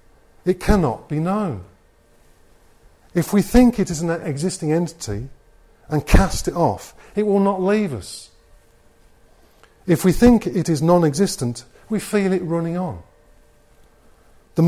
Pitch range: 130-180 Hz